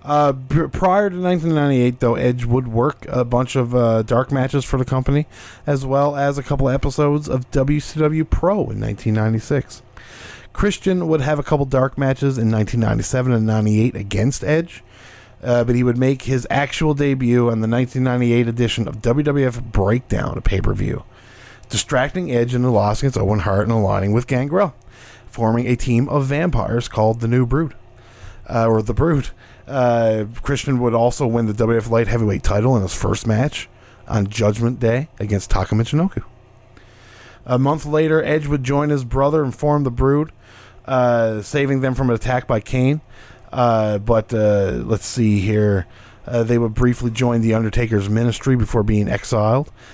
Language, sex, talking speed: English, male, 165 wpm